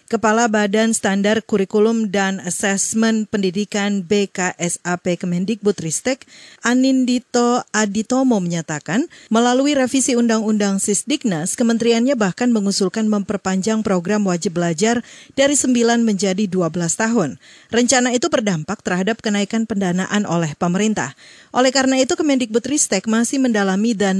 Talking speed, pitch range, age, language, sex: 110 wpm, 190-250 Hz, 40-59, Indonesian, female